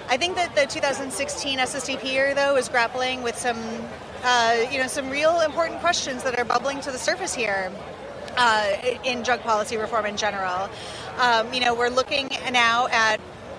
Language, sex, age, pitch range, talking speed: English, female, 30-49, 230-275 Hz, 175 wpm